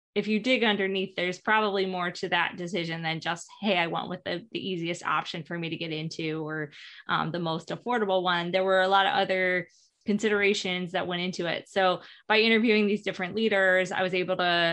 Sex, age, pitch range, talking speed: female, 20-39, 180-205 Hz, 210 wpm